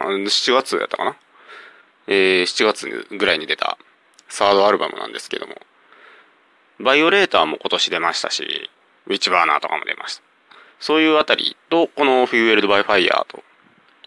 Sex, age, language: male, 30-49, Japanese